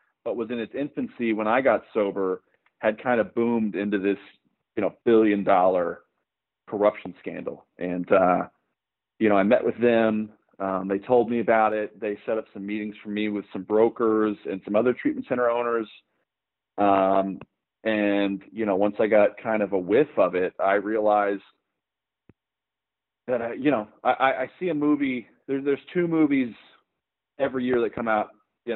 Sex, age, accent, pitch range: male, 40-59, American, 100-120 Hz